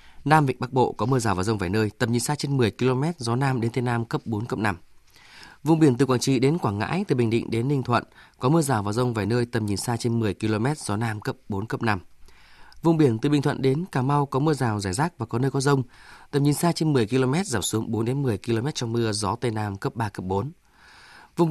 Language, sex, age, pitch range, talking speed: Vietnamese, male, 20-39, 105-140 Hz, 275 wpm